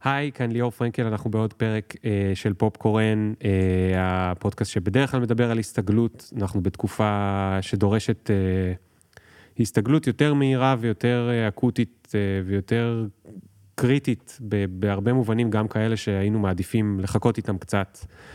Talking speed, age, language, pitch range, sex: 130 wpm, 20-39, Hebrew, 95-115 Hz, male